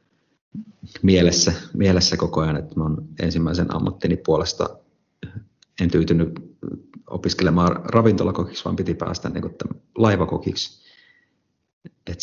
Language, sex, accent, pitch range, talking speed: Finnish, male, native, 80-95 Hz, 90 wpm